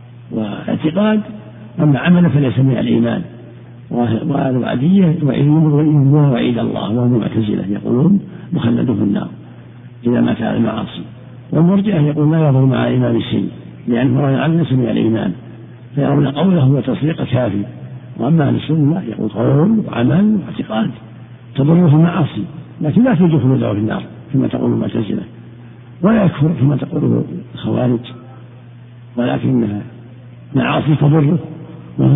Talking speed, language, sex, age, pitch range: 115 wpm, Arabic, male, 60-79, 120-165 Hz